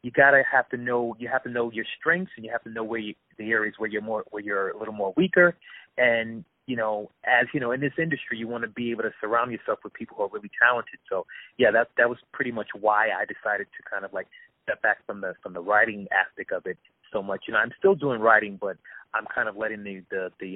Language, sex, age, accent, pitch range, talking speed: English, male, 30-49, American, 105-135 Hz, 270 wpm